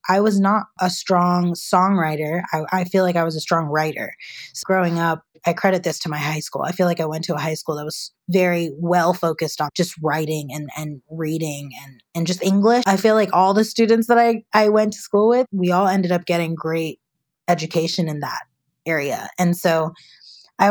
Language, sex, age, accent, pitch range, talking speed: English, female, 20-39, American, 165-195 Hz, 210 wpm